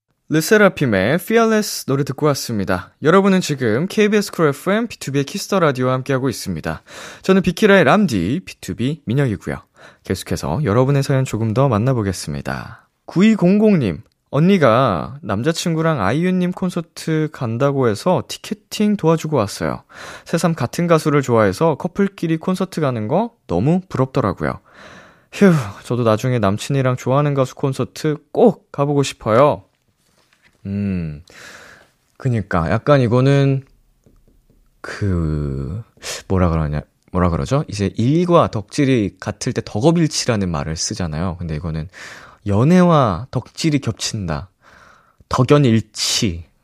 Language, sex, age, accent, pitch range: Korean, male, 20-39, native, 100-160 Hz